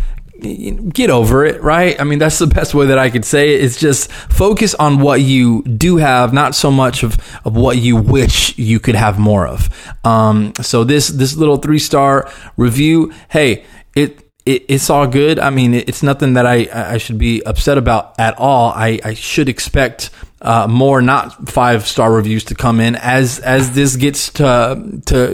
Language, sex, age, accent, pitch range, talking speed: English, male, 20-39, American, 115-145 Hz, 195 wpm